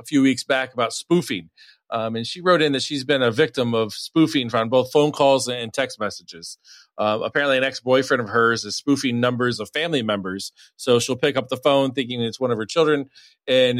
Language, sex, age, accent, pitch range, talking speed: English, male, 40-59, American, 115-150 Hz, 215 wpm